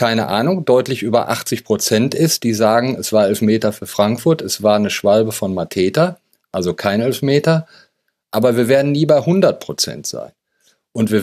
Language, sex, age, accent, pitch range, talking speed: German, male, 40-59, German, 120-165 Hz, 175 wpm